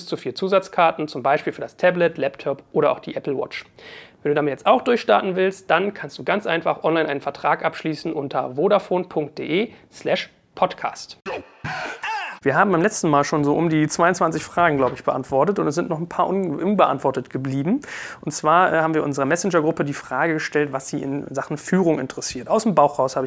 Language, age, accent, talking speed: German, 30-49, German, 195 wpm